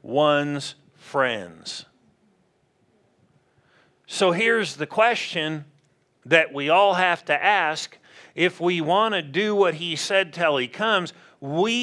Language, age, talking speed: English, 50-69, 120 wpm